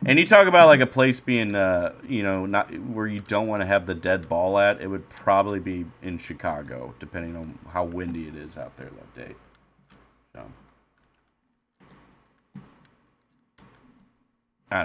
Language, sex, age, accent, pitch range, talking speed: English, male, 30-49, American, 85-120 Hz, 160 wpm